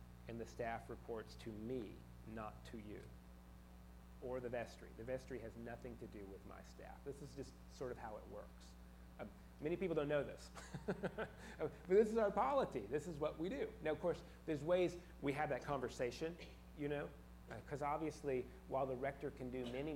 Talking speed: 195 wpm